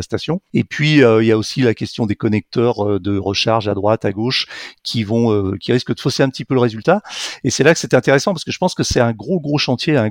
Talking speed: 285 wpm